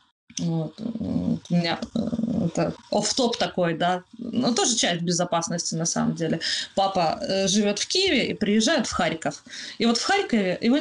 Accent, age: native, 20-39